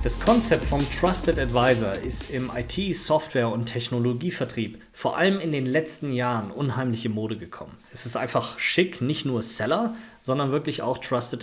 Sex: male